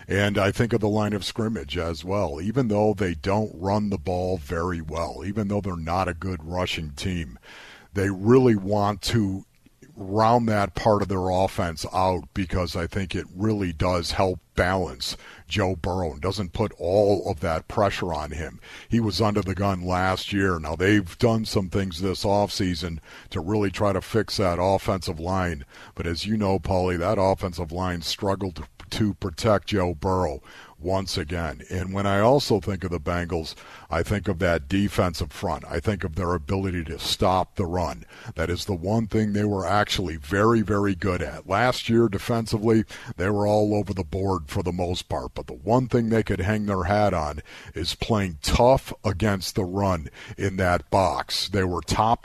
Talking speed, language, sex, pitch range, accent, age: 190 wpm, English, male, 90-105 Hz, American, 50-69